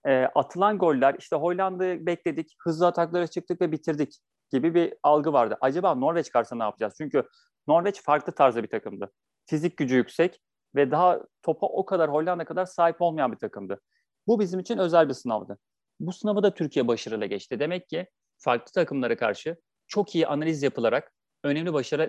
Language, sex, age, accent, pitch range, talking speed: Turkish, male, 40-59, native, 145-180 Hz, 170 wpm